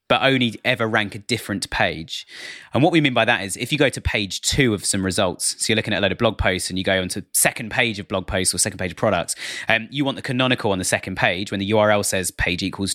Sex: male